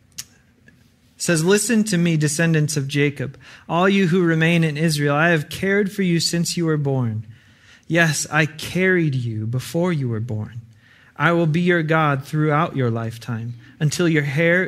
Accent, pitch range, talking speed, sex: American, 120-170 Hz, 170 wpm, male